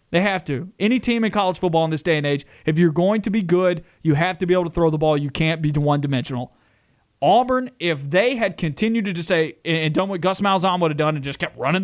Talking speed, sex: 265 wpm, male